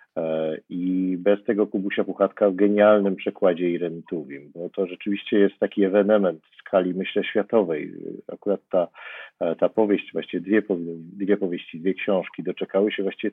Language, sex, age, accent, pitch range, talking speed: Polish, male, 50-69, native, 95-105 Hz, 150 wpm